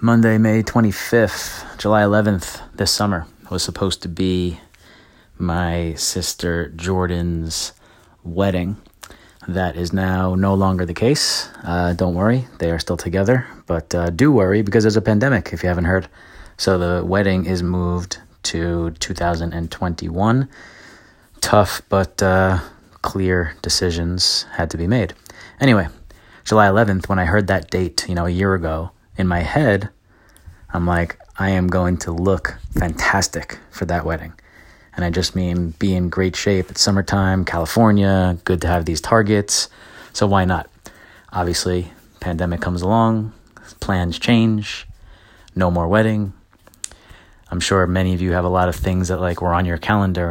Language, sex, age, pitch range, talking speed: English, male, 30-49, 85-100 Hz, 155 wpm